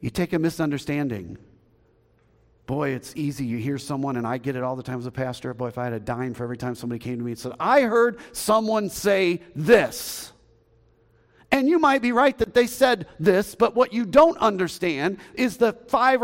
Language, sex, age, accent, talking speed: English, male, 50-69, American, 210 wpm